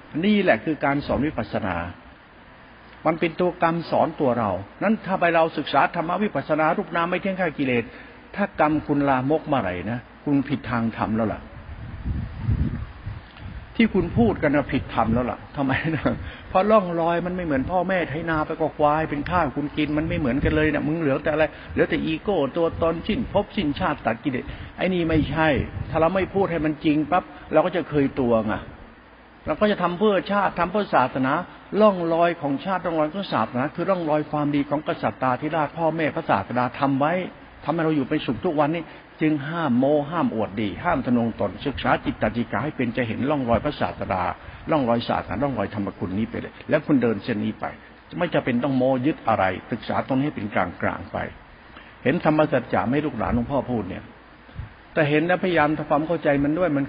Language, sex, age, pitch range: Thai, male, 60-79, 120-165 Hz